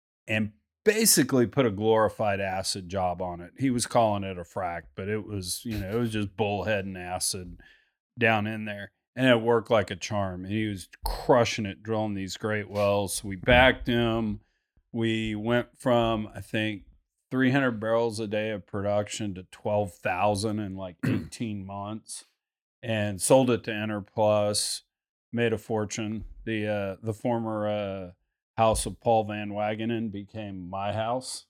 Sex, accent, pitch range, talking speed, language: male, American, 100-115 Hz, 170 wpm, English